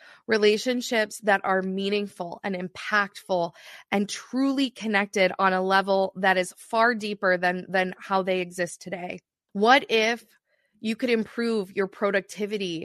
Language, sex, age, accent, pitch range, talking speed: English, female, 20-39, American, 190-230 Hz, 135 wpm